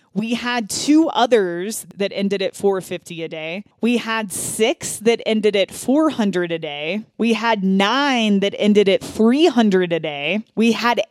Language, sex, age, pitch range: English, female, 20-39, 190-240 Hz